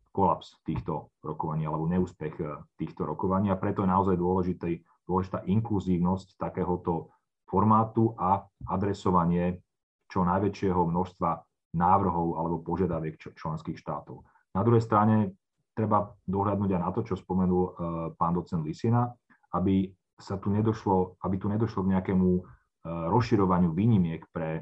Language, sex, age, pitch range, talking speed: Slovak, male, 30-49, 85-100 Hz, 125 wpm